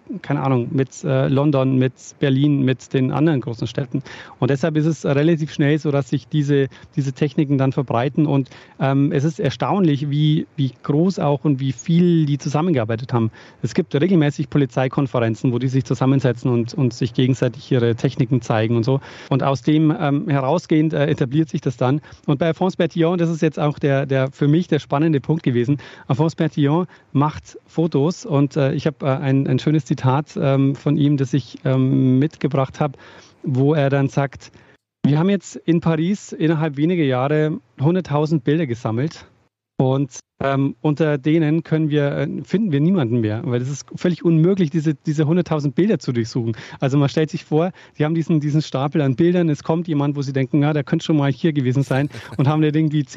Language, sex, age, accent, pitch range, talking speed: German, male, 40-59, German, 135-160 Hz, 190 wpm